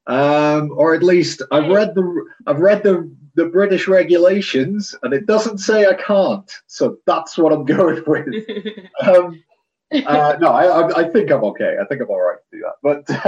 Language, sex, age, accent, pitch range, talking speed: English, male, 30-49, British, 115-195 Hz, 195 wpm